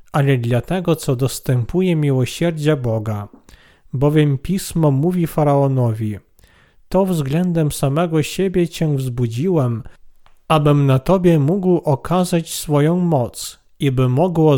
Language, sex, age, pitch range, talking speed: Polish, male, 40-59, 135-175 Hz, 110 wpm